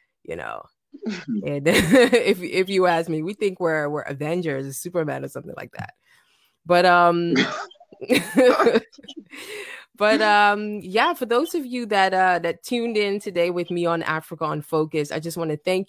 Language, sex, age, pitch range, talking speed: English, female, 20-39, 155-210 Hz, 165 wpm